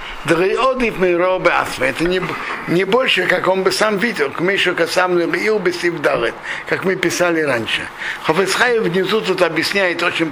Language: Russian